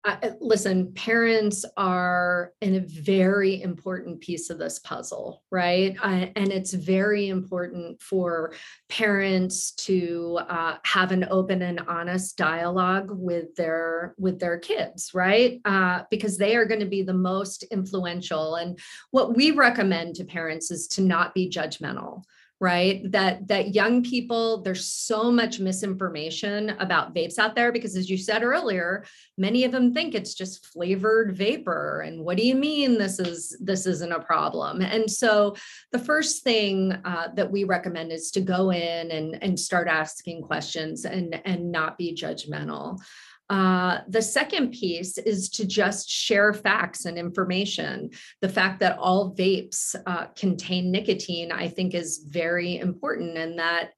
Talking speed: 155 wpm